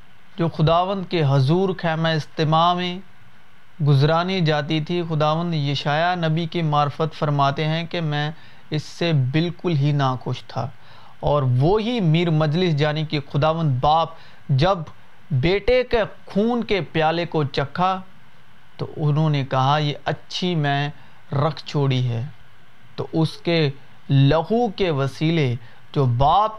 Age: 40-59